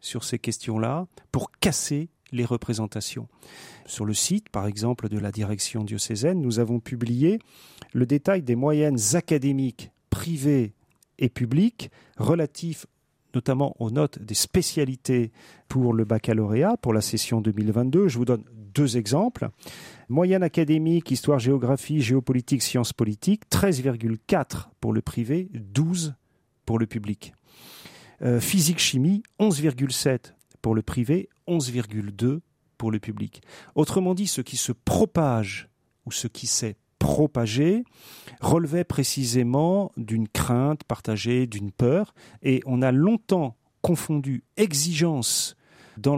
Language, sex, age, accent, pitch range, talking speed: French, male, 40-59, French, 115-155 Hz, 120 wpm